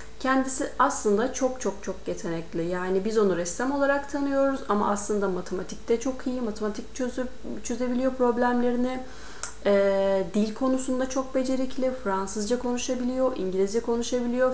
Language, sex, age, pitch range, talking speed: Turkish, female, 30-49, 200-260 Hz, 125 wpm